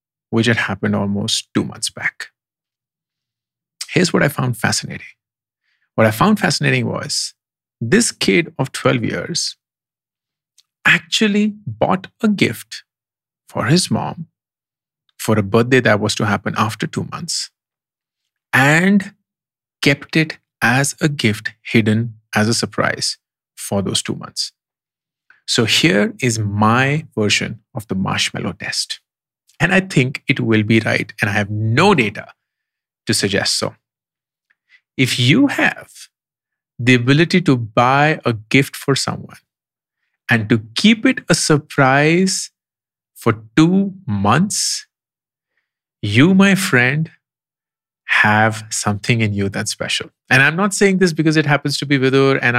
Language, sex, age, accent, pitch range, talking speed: English, male, 50-69, Indian, 110-160 Hz, 135 wpm